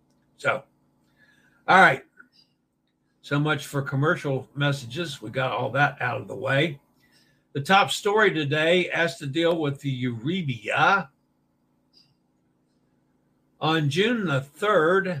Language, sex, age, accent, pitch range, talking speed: English, male, 60-79, American, 130-160 Hz, 120 wpm